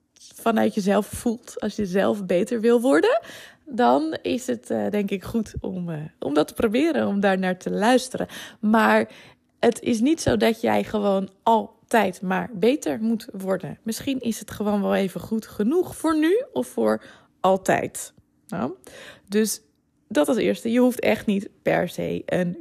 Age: 20-39